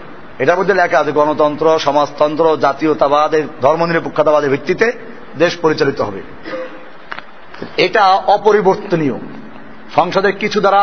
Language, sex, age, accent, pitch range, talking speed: Bengali, male, 50-69, native, 175-230 Hz, 100 wpm